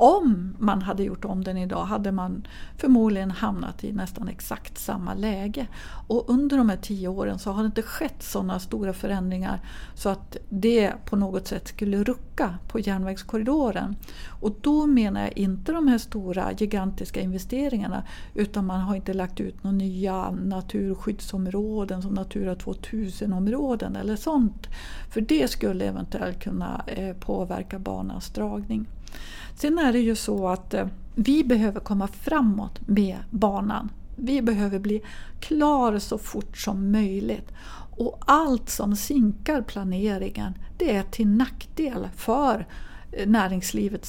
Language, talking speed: Swedish, 140 wpm